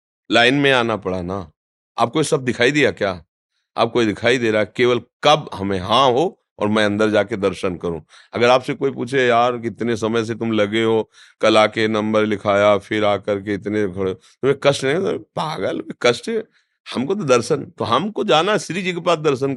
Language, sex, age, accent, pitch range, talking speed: Hindi, male, 40-59, native, 100-130 Hz, 180 wpm